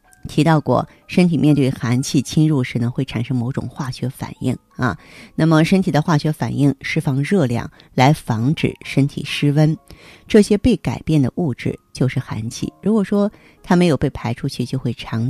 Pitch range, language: 125-165 Hz, Chinese